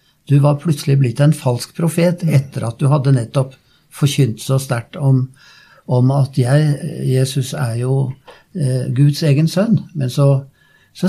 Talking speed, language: 155 wpm, English